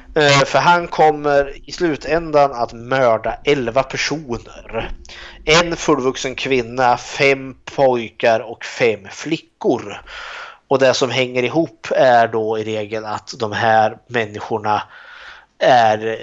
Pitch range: 110-140 Hz